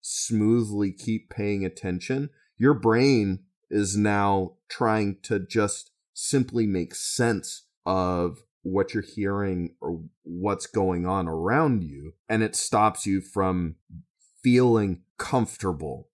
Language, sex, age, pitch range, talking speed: English, male, 30-49, 90-110 Hz, 115 wpm